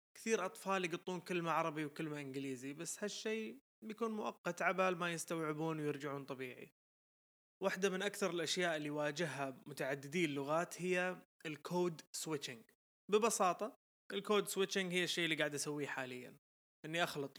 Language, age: Arabic, 20-39